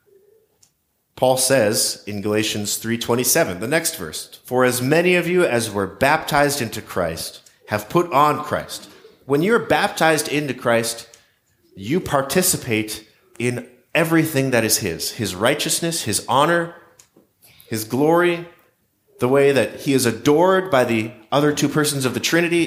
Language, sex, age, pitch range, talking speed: English, male, 30-49, 110-155 Hz, 145 wpm